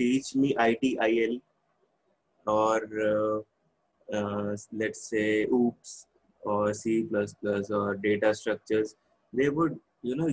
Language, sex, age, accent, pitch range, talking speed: English, male, 20-39, Indian, 105-125 Hz, 105 wpm